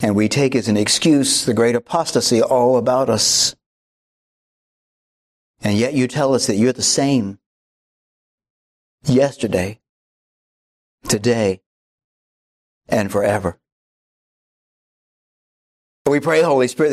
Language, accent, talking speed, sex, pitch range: English, American, 105 wpm, male, 105-130 Hz